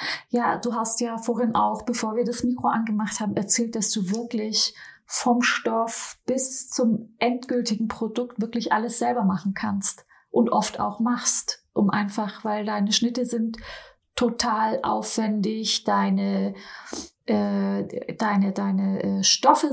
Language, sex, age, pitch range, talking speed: German, female, 30-49, 210-240 Hz, 135 wpm